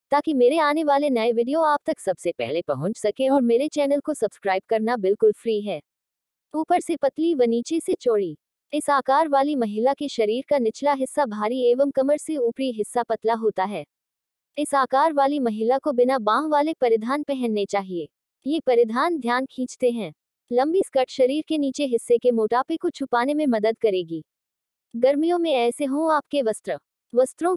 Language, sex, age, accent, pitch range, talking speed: Hindi, female, 20-39, native, 225-290 Hz, 140 wpm